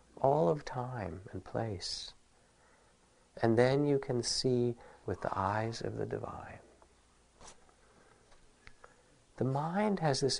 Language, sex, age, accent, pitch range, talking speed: English, male, 50-69, American, 85-130 Hz, 115 wpm